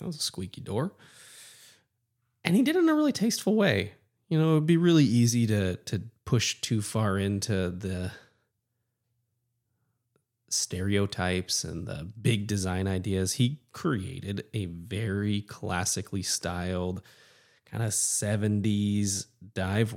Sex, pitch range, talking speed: male, 105-130 Hz, 130 wpm